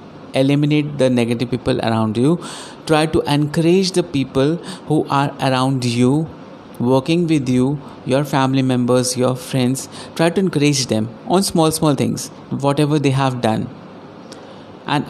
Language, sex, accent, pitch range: Hindi, male, native, 125-155 Hz